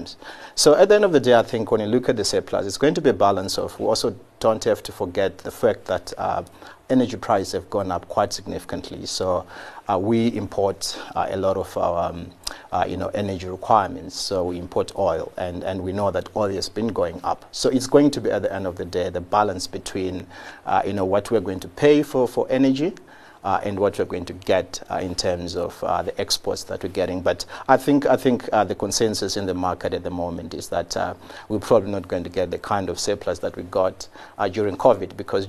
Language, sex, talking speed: English, male, 245 wpm